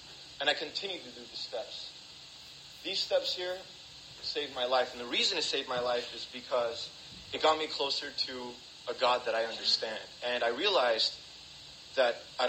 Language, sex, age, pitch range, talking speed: English, male, 30-49, 125-185 Hz, 180 wpm